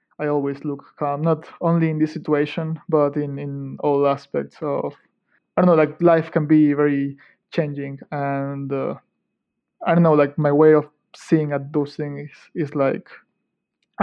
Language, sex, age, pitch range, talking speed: English, male, 20-39, 145-165 Hz, 175 wpm